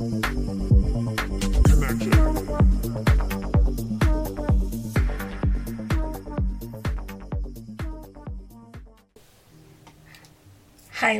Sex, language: female, Danish